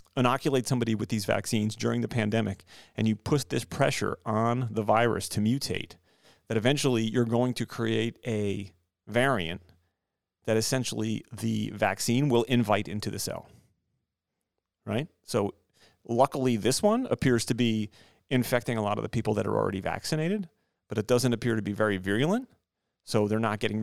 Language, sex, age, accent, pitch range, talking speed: English, male, 40-59, American, 100-120 Hz, 165 wpm